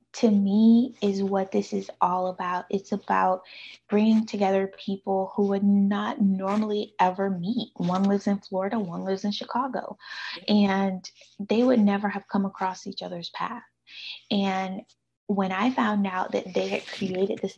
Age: 20-39